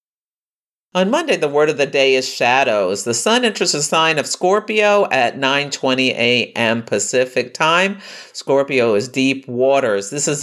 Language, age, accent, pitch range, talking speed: English, 50-69, American, 125-160 Hz, 155 wpm